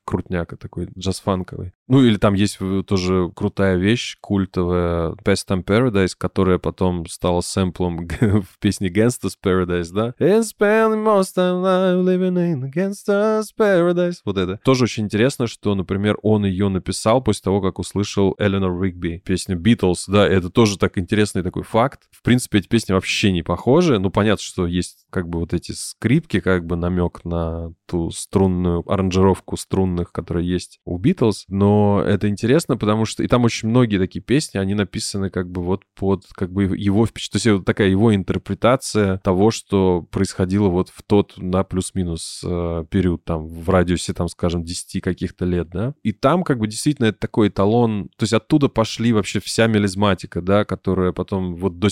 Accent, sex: native, male